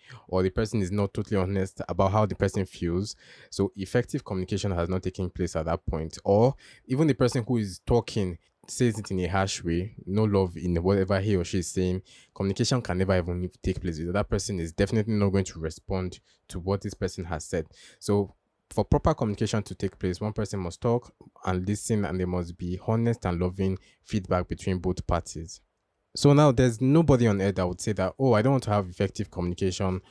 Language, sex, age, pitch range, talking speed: English, male, 20-39, 90-110 Hz, 215 wpm